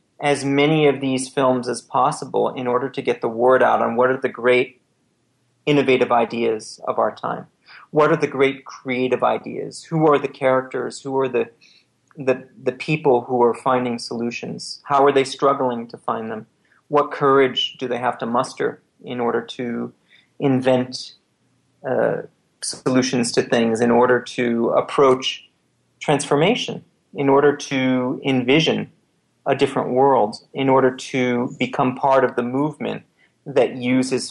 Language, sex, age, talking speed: English, male, 40-59, 155 wpm